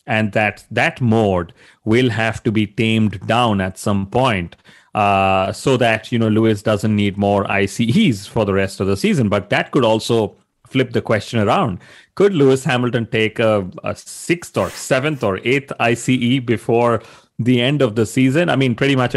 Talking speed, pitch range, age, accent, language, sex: 185 wpm, 105-125 Hz, 30-49, Indian, English, male